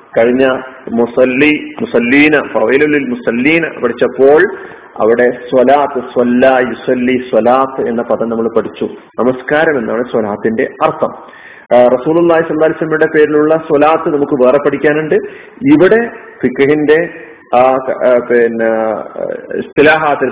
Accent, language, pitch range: native, Malayalam, 125-155 Hz